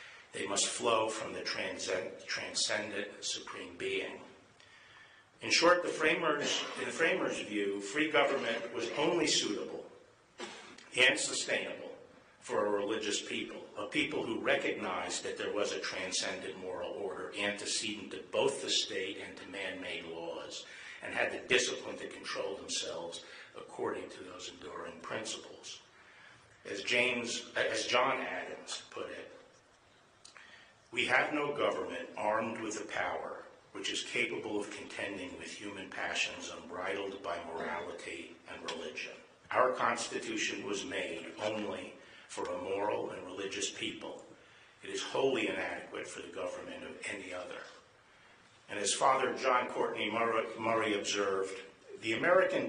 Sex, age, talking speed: male, 50-69, 135 wpm